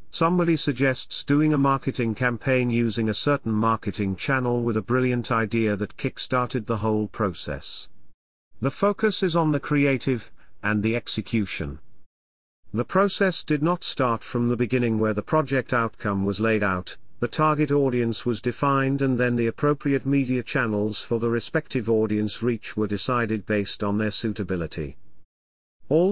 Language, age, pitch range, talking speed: English, 40-59, 105-140 Hz, 155 wpm